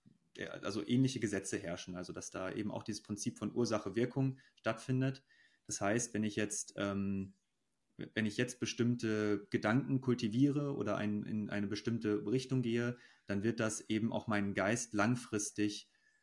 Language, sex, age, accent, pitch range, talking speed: German, male, 30-49, German, 100-120 Hz, 150 wpm